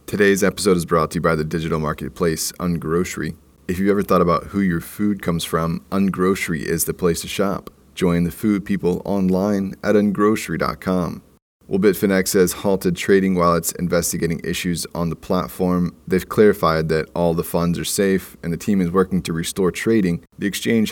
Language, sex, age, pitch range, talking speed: English, male, 30-49, 85-95 Hz, 185 wpm